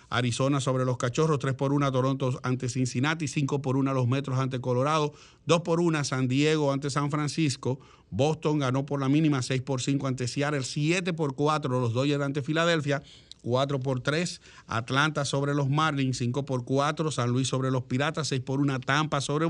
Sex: male